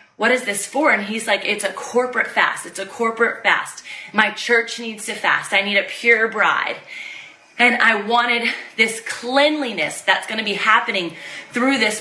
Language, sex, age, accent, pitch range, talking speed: English, female, 20-39, American, 210-260 Hz, 185 wpm